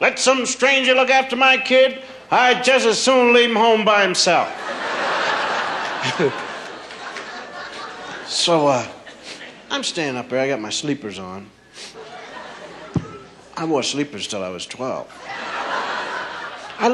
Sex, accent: male, American